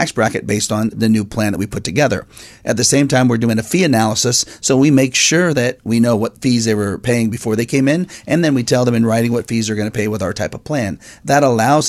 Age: 40-59